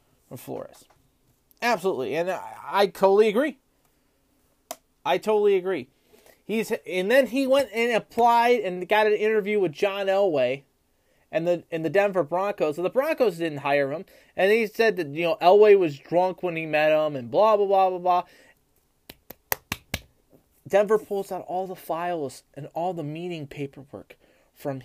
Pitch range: 155-205 Hz